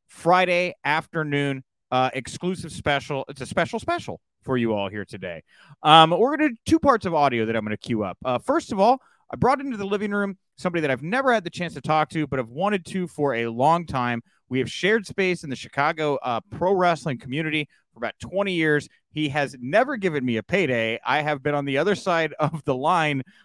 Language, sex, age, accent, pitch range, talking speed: English, male, 30-49, American, 135-185 Hz, 230 wpm